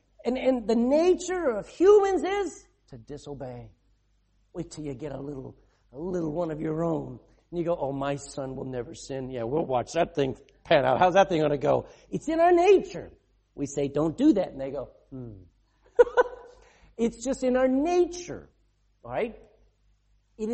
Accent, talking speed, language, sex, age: American, 185 wpm, English, male, 50-69